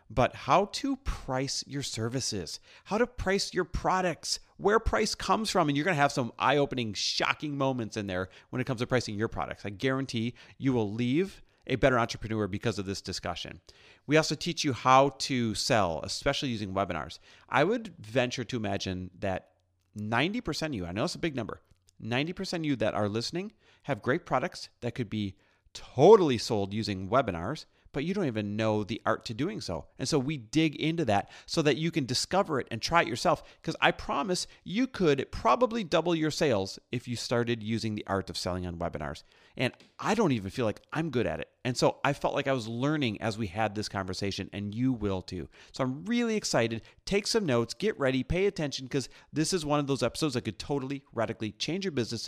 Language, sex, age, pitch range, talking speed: English, male, 30-49, 105-145 Hz, 210 wpm